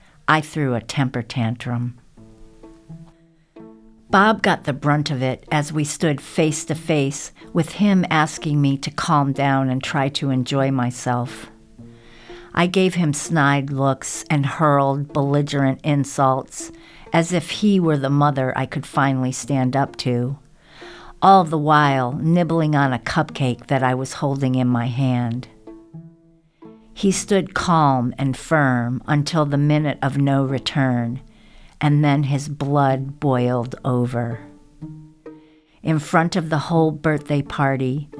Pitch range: 130-155 Hz